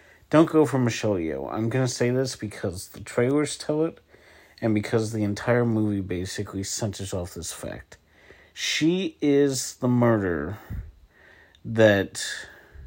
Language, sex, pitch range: English, male, 95-115 Hz